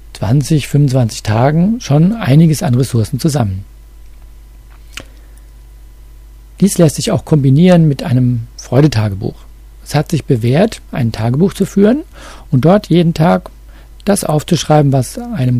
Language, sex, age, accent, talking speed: German, male, 50-69, German, 125 wpm